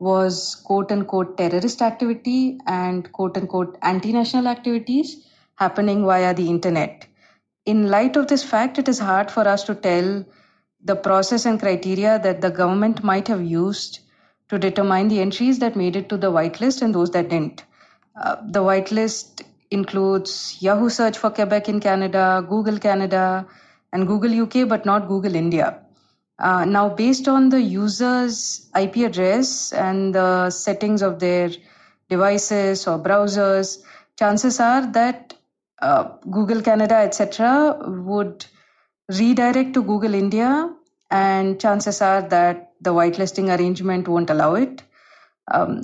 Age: 20-39